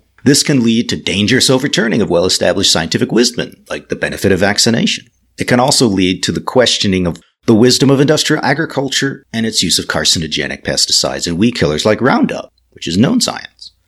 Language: English